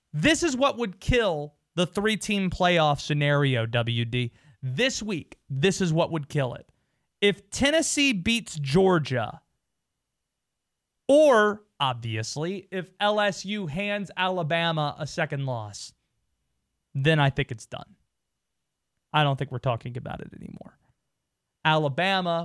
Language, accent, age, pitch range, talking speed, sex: English, American, 30-49, 145-205 Hz, 120 wpm, male